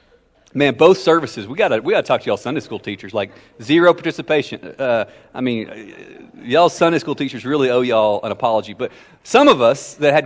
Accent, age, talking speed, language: American, 30-49, 195 wpm, English